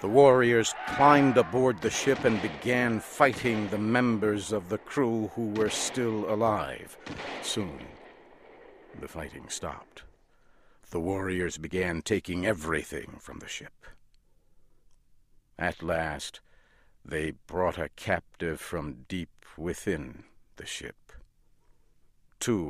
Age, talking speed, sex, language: 60-79, 110 wpm, male, English